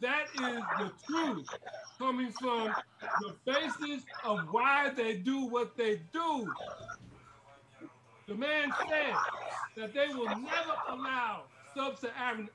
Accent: American